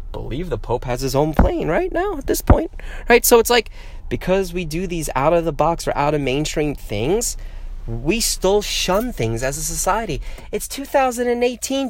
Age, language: 30-49, English